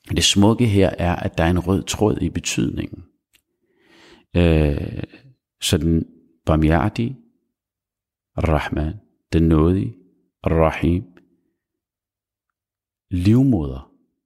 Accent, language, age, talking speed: native, Danish, 50-69, 90 wpm